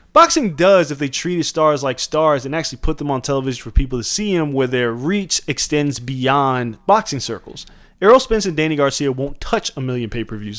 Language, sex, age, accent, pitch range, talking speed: English, male, 20-39, American, 135-185 Hz, 205 wpm